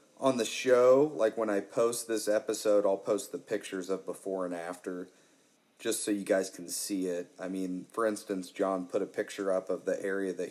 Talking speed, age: 210 wpm, 40-59